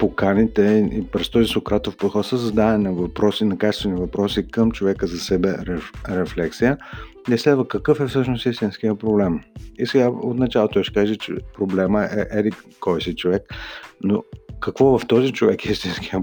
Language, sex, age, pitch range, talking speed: Bulgarian, male, 50-69, 95-110 Hz, 170 wpm